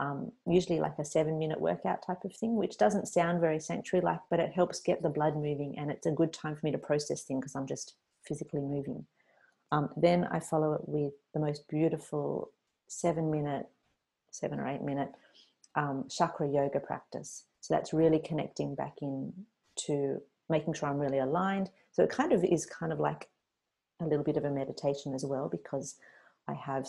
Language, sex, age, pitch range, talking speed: English, female, 40-59, 135-160 Hz, 195 wpm